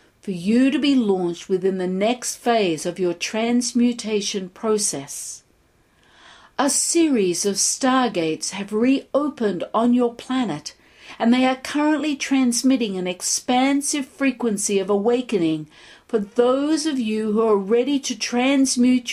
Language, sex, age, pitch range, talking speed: English, female, 50-69, 200-270 Hz, 130 wpm